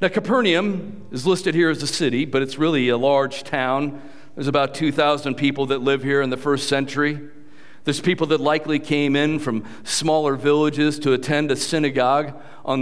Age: 50-69